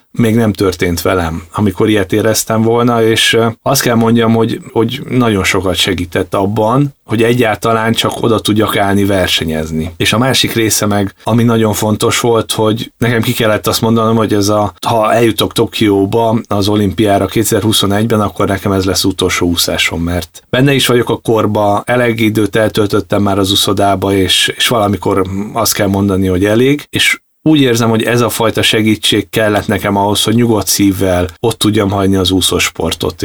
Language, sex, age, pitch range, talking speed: Hungarian, male, 30-49, 95-115 Hz, 170 wpm